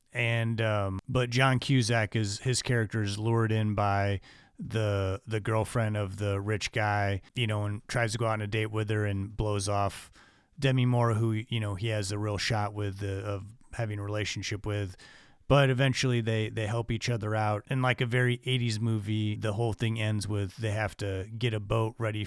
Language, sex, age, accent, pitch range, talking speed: English, male, 30-49, American, 100-115 Hz, 205 wpm